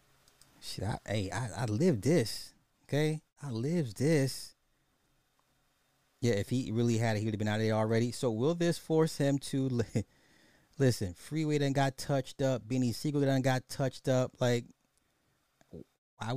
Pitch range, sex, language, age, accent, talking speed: 105-145 Hz, male, English, 30-49, American, 170 wpm